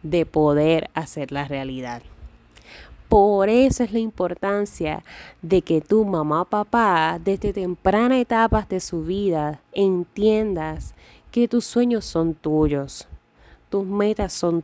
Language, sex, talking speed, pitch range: Spanish, female, 125 wpm, 170-230 Hz